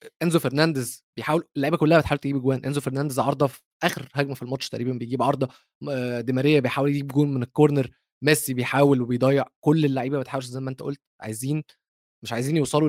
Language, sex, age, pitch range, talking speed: Arabic, male, 20-39, 130-160 Hz, 180 wpm